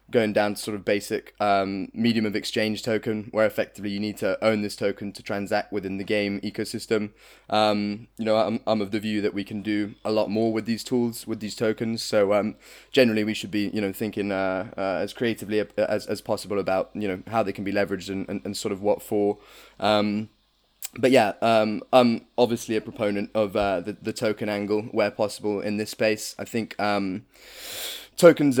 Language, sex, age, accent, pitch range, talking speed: English, male, 20-39, British, 100-110 Hz, 210 wpm